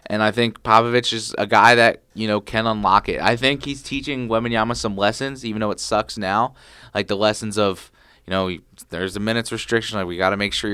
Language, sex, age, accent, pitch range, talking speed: English, male, 20-39, American, 95-115 Hz, 230 wpm